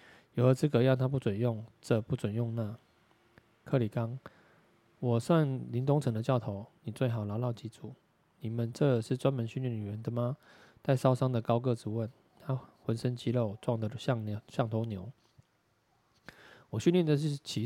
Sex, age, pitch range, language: male, 20-39, 110-130 Hz, Chinese